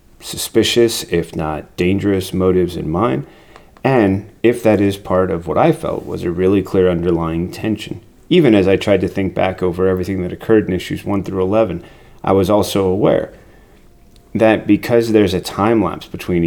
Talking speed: 180 wpm